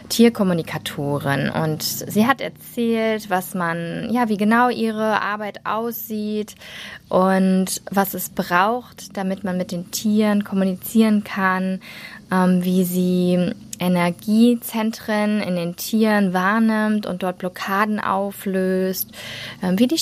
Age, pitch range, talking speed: 20-39, 180-215 Hz, 115 wpm